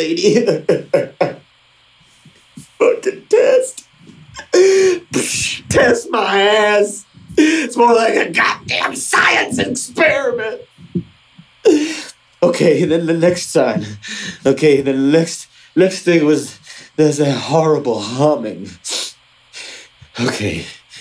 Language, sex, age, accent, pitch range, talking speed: English, male, 30-49, American, 135-205 Hz, 85 wpm